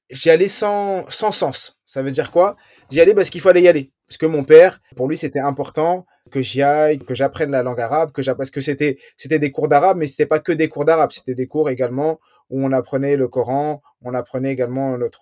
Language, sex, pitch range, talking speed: French, male, 145-190 Hz, 240 wpm